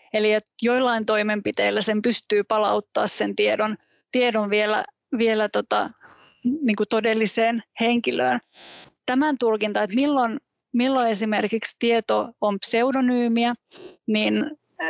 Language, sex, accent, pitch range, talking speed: Finnish, female, native, 215-240 Hz, 100 wpm